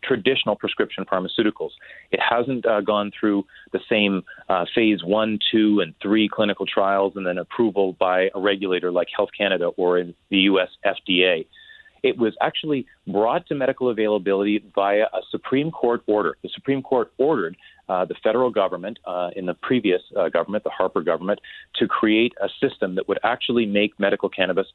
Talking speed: 170 wpm